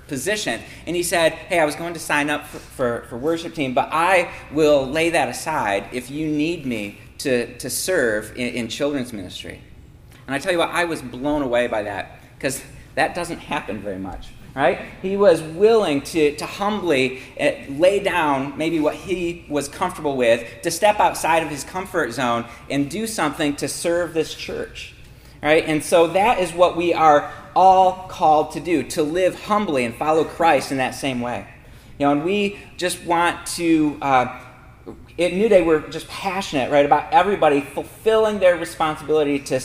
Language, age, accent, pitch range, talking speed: English, 40-59, American, 140-175 Hz, 185 wpm